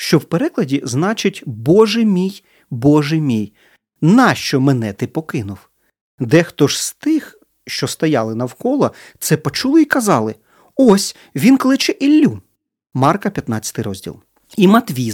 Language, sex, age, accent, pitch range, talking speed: Ukrainian, male, 40-59, native, 125-195 Hz, 130 wpm